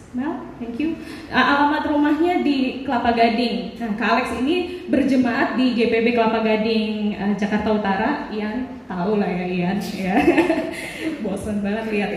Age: 20-39